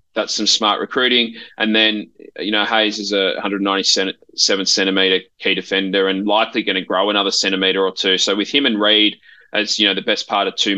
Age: 20-39